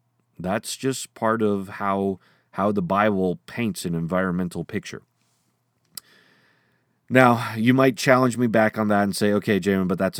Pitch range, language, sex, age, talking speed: 95-120 Hz, English, male, 30-49, 155 wpm